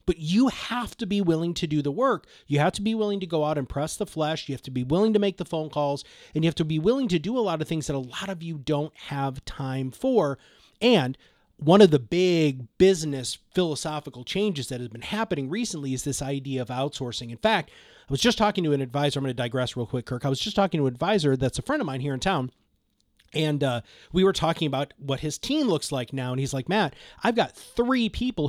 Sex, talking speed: male, 255 wpm